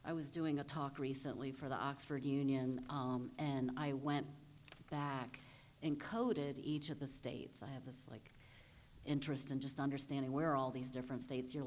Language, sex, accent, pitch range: English, female, American, 135-185 Hz